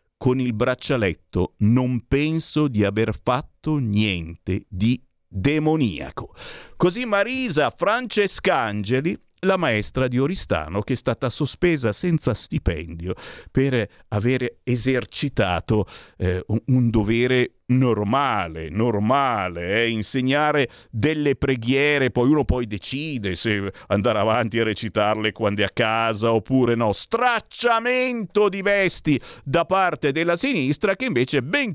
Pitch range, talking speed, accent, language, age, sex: 105-145 Hz, 120 wpm, native, Italian, 50-69, male